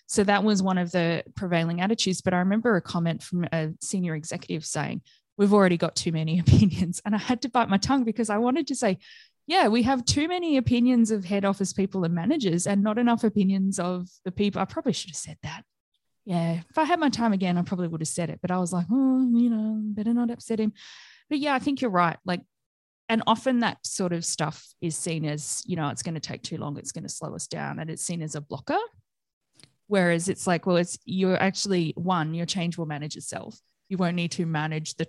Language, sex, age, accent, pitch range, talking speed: English, female, 20-39, Australian, 170-210 Hz, 240 wpm